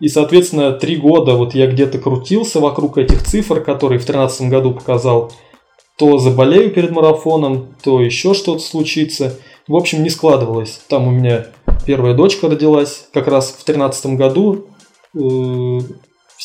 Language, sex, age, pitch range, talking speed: Russian, male, 20-39, 125-150 Hz, 145 wpm